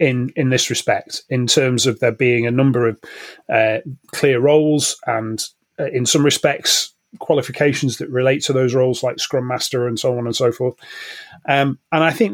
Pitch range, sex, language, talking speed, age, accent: 125-160 Hz, male, English, 190 wpm, 30-49, British